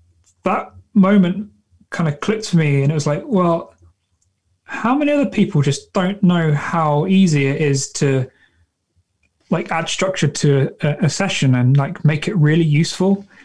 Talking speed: 165 wpm